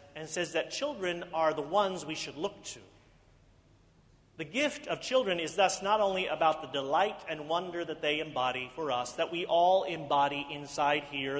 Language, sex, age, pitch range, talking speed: English, male, 40-59, 140-175 Hz, 185 wpm